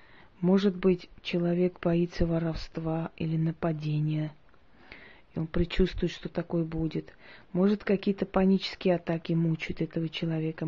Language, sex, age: Russian, female, 30-49